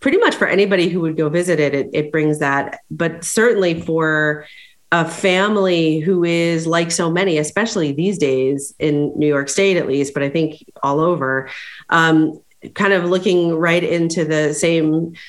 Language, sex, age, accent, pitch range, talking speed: English, female, 30-49, American, 145-180 Hz, 175 wpm